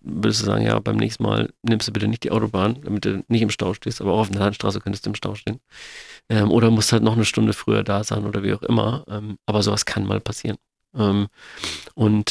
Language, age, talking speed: German, 40-59, 250 wpm